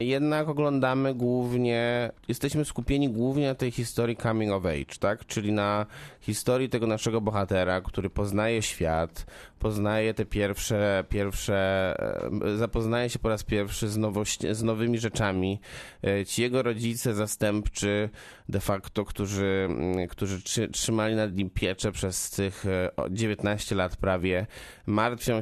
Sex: male